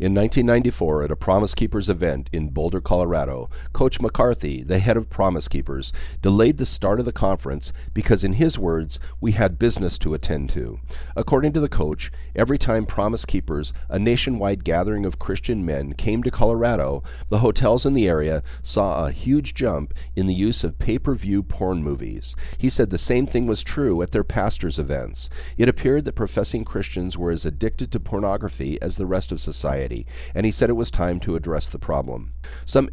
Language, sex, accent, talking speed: English, male, American, 190 wpm